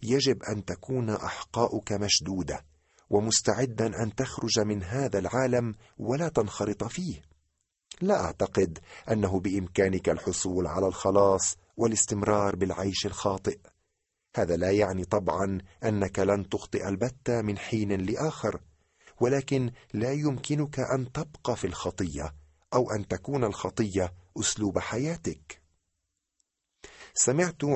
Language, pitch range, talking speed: Arabic, 95-125 Hz, 105 wpm